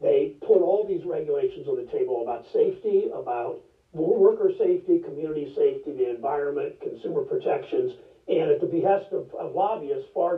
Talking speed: 155 wpm